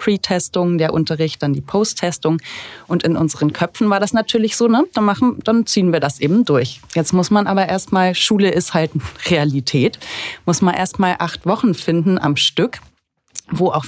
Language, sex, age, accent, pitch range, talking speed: German, female, 30-49, German, 150-180 Hz, 180 wpm